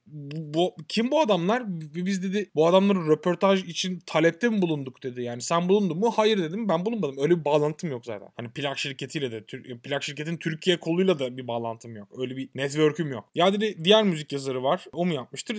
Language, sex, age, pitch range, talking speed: Turkish, male, 20-39, 145-205 Hz, 205 wpm